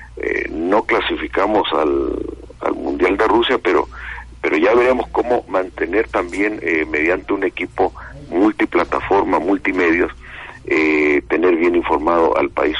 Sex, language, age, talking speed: male, Spanish, 50-69, 125 wpm